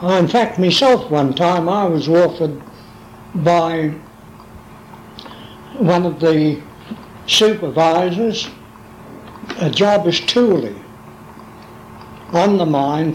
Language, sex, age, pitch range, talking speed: English, male, 60-79, 150-195 Hz, 90 wpm